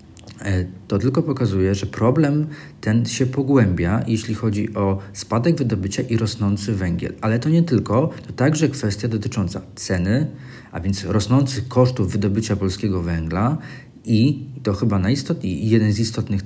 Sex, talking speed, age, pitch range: male, 150 wpm, 40-59, 95-120 Hz